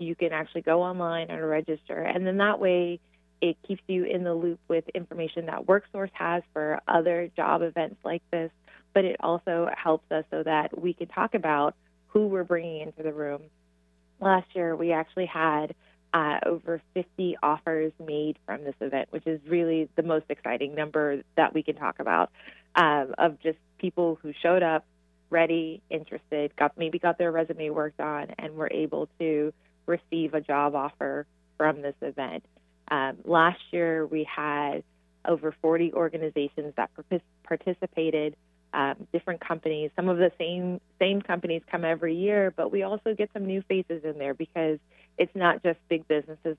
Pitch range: 150-170 Hz